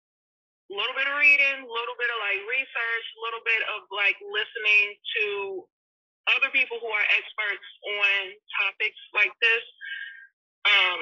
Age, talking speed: 30-49, 145 wpm